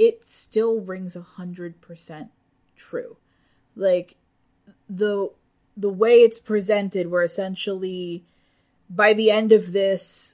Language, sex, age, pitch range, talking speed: English, female, 20-39, 180-210 Hz, 105 wpm